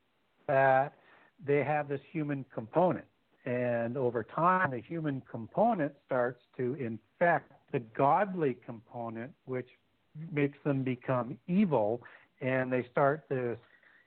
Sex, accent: male, American